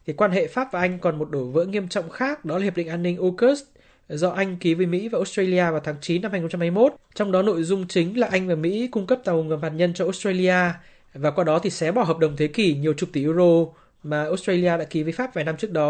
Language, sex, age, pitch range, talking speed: Vietnamese, male, 20-39, 160-195 Hz, 275 wpm